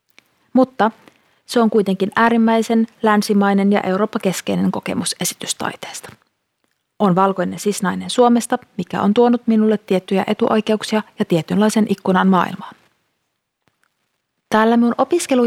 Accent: native